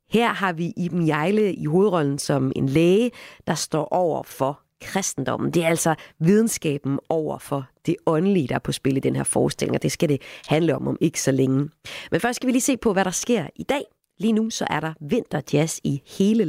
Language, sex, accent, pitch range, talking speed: Danish, female, native, 140-200 Hz, 220 wpm